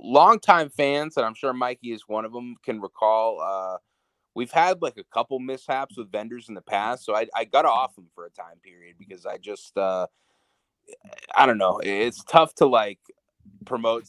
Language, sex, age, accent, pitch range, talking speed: English, male, 20-39, American, 95-125 Hz, 195 wpm